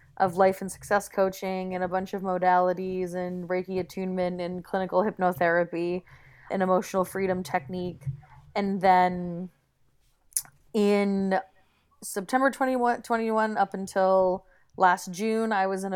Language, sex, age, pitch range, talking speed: English, female, 20-39, 185-205 Hz, 125 wpm